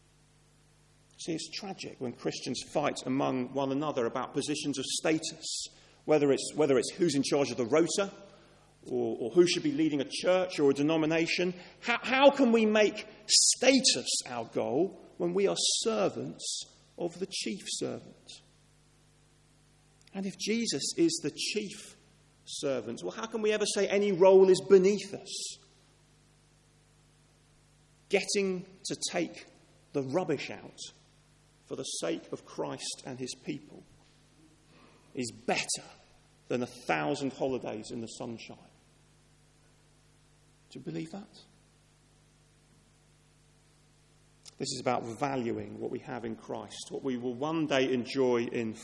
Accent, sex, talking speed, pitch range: British, male, 135 wpm, 130-190 Hz